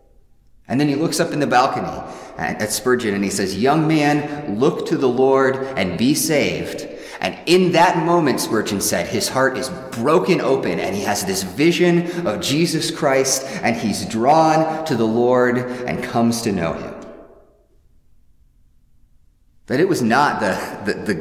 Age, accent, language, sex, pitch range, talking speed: 30-49, American, English, male, 90-135 Hz, 165 wpm